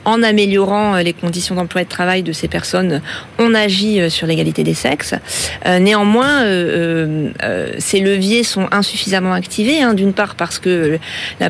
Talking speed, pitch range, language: 165 wpm, 170-215 Hz, French